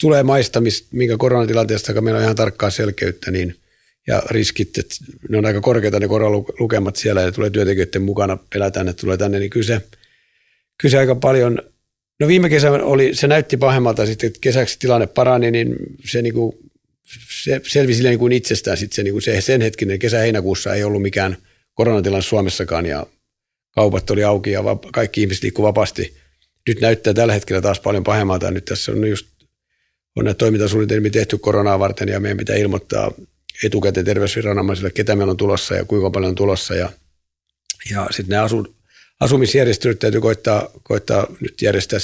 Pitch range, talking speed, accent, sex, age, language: 95-115 Hz, 160 wpm, native, male, 50-69, Finnish